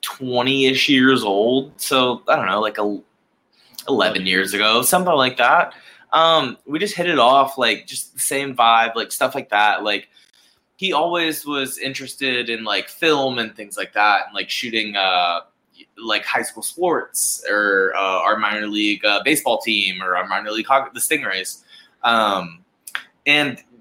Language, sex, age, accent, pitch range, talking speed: English, male, 20-39, American, 110-140 Hz, 165 wpm